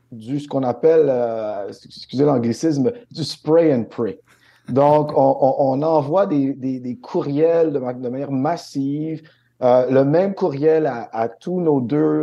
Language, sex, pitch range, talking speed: French, male, 125-155 Hz, 140 wpm